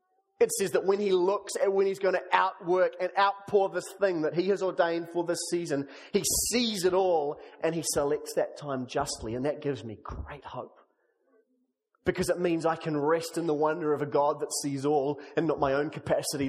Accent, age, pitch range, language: Australian, 30-49, 150-210 Hz, English